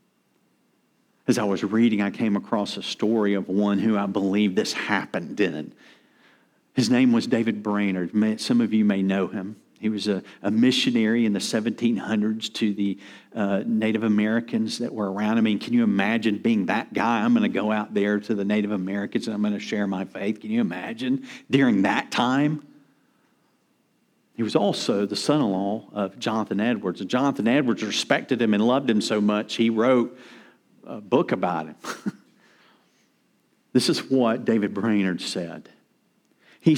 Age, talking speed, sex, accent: 50-69, 170 wpm, male, American